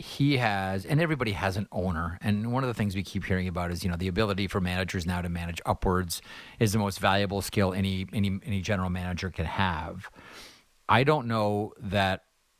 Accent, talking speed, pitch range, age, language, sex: American, 205 wpm, 95-120 Hz, 40-59, English, male